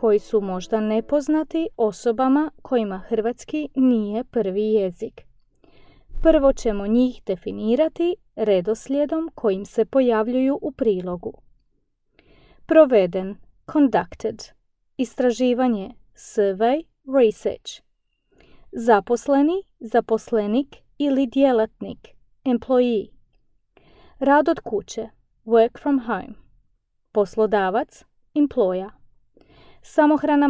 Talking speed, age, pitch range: 85 wpm, 30-49, 220-275 Hz